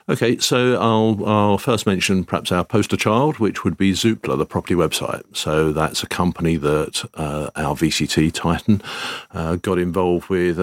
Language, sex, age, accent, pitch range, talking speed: English, male, 50-69, British, 80-105 Hz, 170 wpm